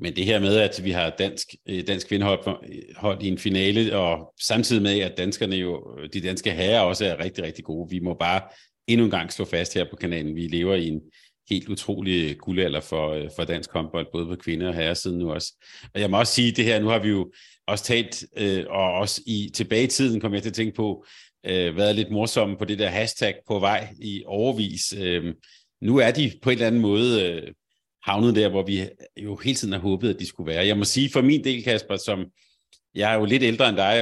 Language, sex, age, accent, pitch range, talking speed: Danish, male, 40-59, native, 95-110 Hz, 230 wpm